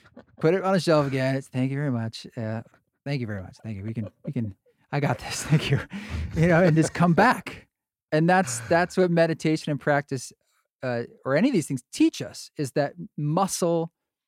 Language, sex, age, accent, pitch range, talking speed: English, male, 40-59, American, 125-165 Hz, 210 wpm